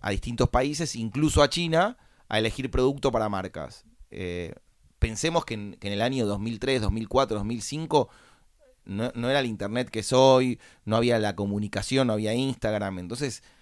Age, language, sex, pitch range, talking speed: 30-49, Spanish, male, 105-140 Hz, 165 wpm